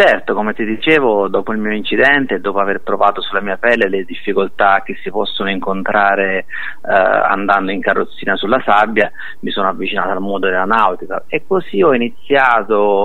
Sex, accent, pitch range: male, native, 100-125 Hz